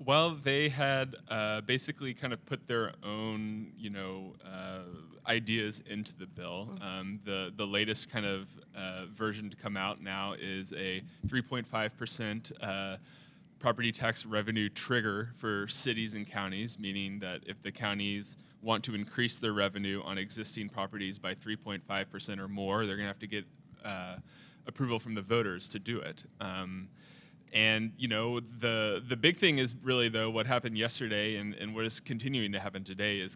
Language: English